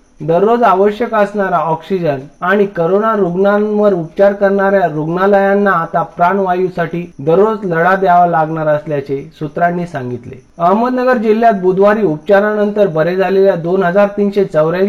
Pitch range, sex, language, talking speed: 165-210 Hz, male, Marathi, 75 wpm